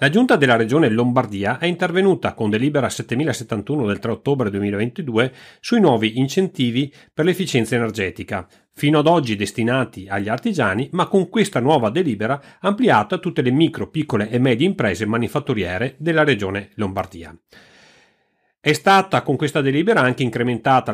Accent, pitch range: native, 105-150 Hz